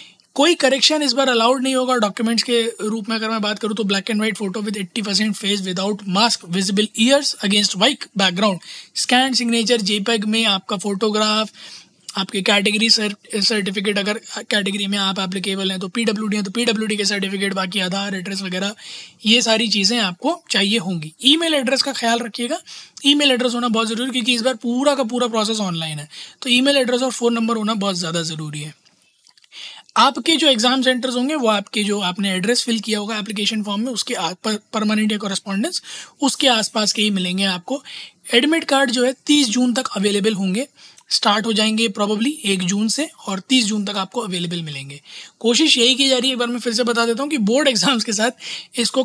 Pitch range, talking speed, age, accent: 200-245 Hz, 200 wpm, 20-39, native